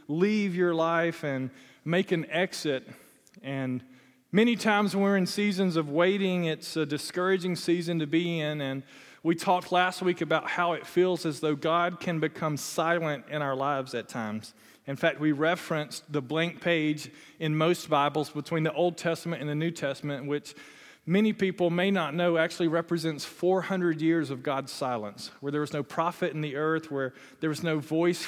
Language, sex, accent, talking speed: English, male, American, 185 wpm